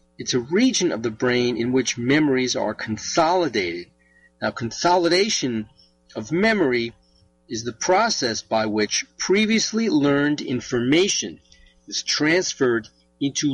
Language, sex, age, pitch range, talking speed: English, male, 40-59, 105-155 Hz, 115 wpm